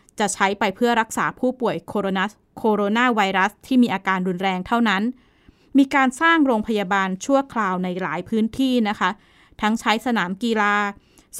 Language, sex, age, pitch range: Thai, female, 20-39, 195-240 Hz